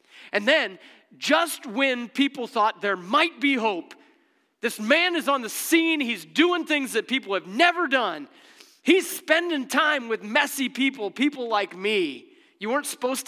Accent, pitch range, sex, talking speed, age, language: American, 225-320 Hz, male, 165 wpm, 40-59, English